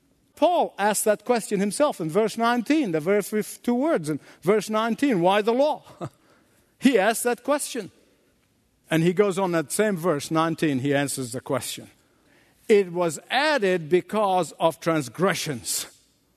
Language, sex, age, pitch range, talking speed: English, male, 50-69, 180-250 Hz, 150 wpm